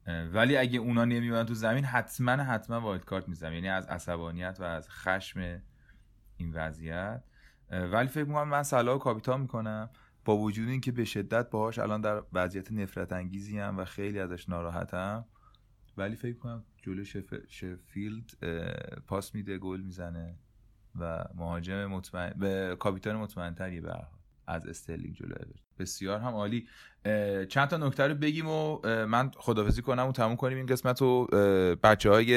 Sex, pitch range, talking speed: male, 90-110 Hz, 150 wpm